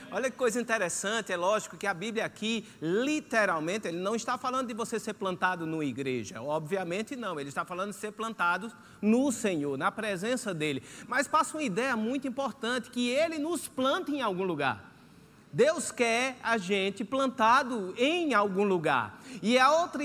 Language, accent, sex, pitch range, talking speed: Portuguese, Brazilian, male, 210-265 Hz, 170 wpm